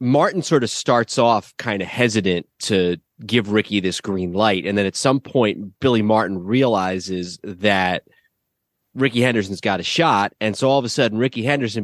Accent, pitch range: American, 95-125 Hz